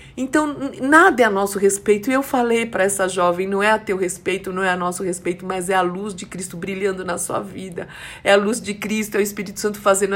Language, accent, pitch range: Portuguese, Brazilian, 195-275 Hz